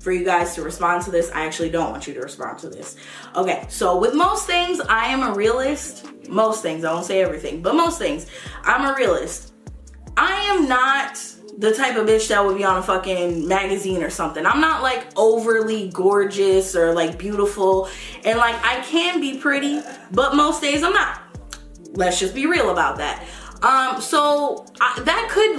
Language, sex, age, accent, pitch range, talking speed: English, female, 20-39, American, 175-255 Hz, 195 wpm